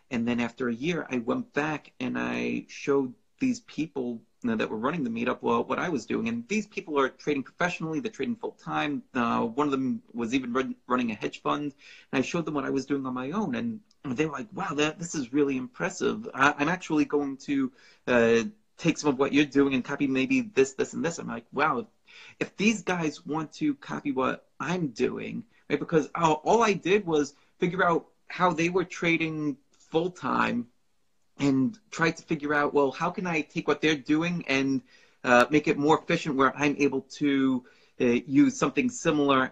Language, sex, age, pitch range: Telugu, male, 30-49, 130-175 Hz